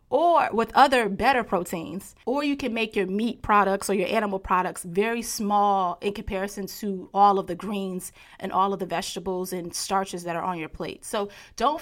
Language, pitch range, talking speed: English, 190-230 Hz, 200 wpm